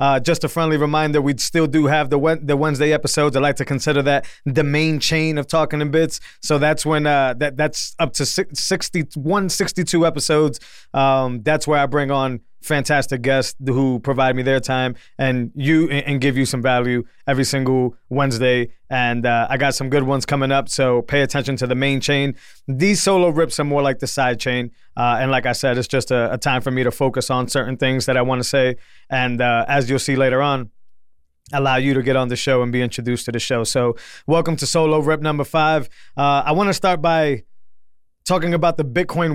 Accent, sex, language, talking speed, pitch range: American, male, English, 215 wpm, 130-150 Hz